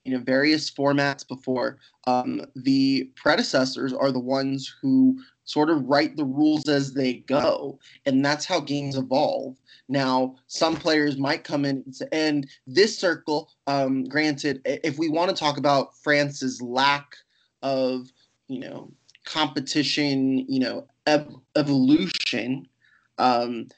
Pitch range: 135-150 Hz